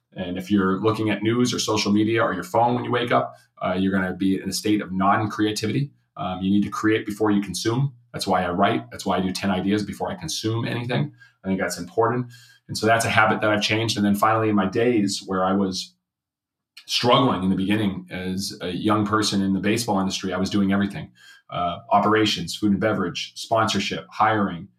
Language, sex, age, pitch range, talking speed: English, male, 30-49, 95-110 Hz, 220 wpm